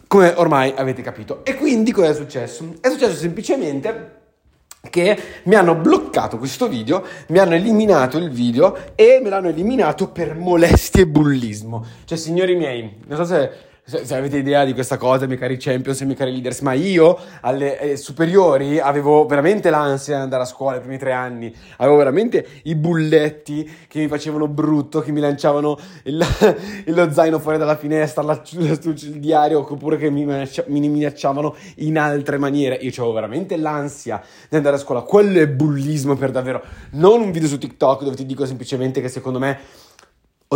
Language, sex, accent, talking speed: Italian, male, native, 180 wpm